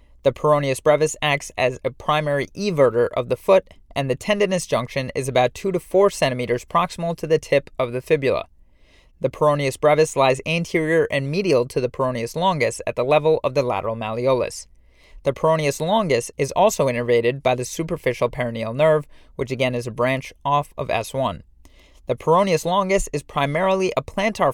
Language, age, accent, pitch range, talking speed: English, 30-49, American, 125-160 Hz, 175 wpm